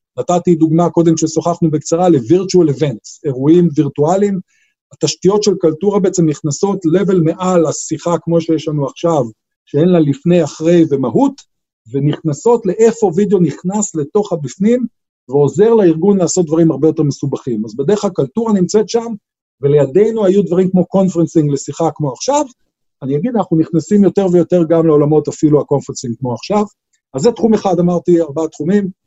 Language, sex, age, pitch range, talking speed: Hebrew, male, 50-69, 150-190 Hz, 145 wpm